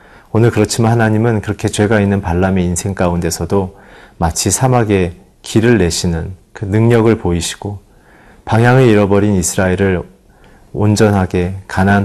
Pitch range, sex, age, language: 95-115 Hz, male, 40-59, Korean